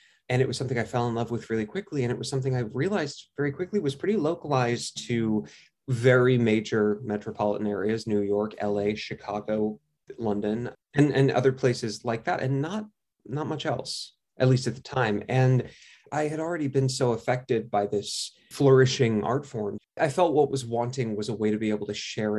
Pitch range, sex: 110-135 Hz, male